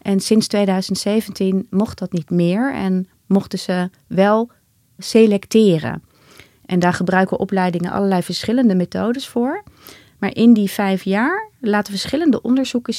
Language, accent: Dutch, Dutch